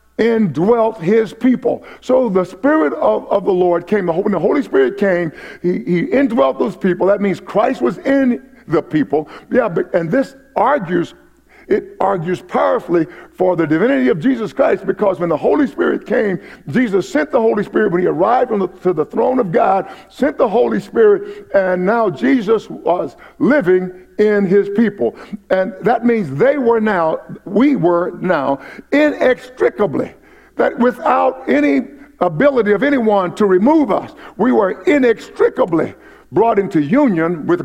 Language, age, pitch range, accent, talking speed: English, 50-69, 185-270 Hz, American, 165 wpm